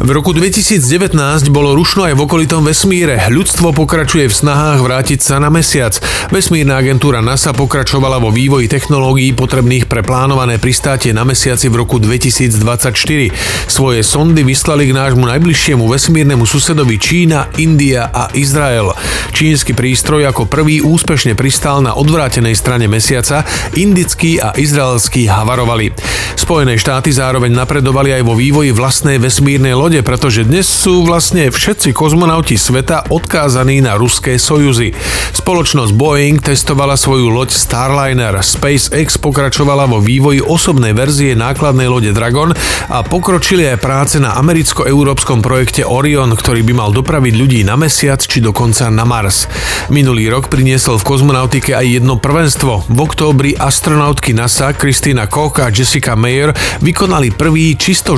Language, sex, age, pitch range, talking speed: Slovak, male, 40-59, 120-150 Hz, 140 wpm